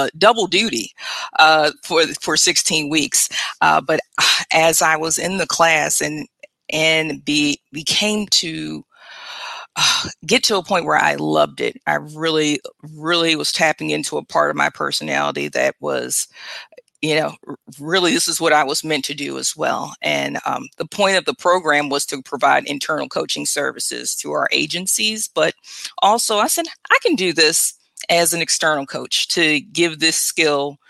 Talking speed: 175 wpm